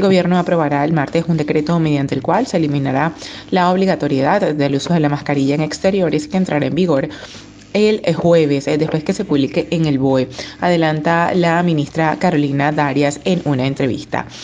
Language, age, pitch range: Spanish, 20-39, 145-185 Hz